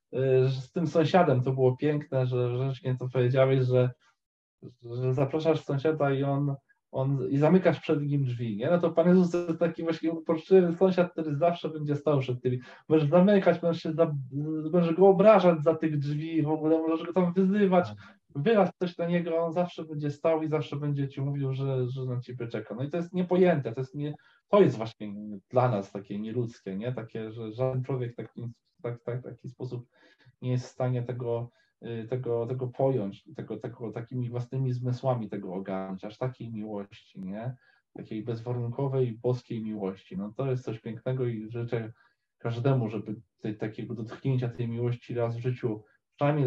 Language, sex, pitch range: Polish, male, 115-155 Hz